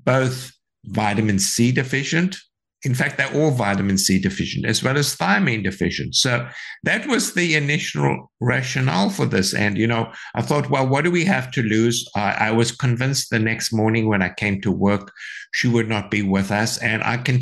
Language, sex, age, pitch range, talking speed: English, male, 60-79, 105-140 Hz, 195 wpm